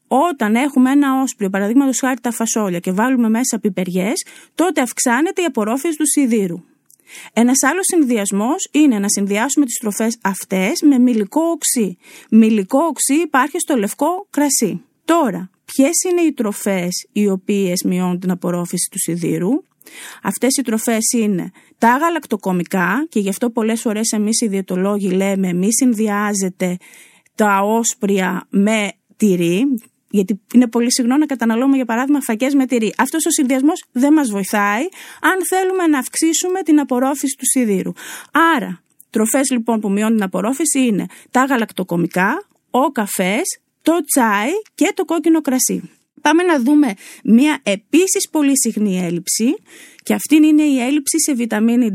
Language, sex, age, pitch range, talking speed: Greek, female, 20-39, 205-290 Hz, 145 wpm